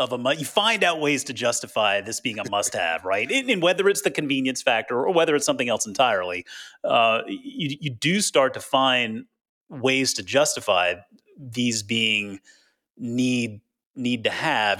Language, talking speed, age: English, 170 wpm, 30-49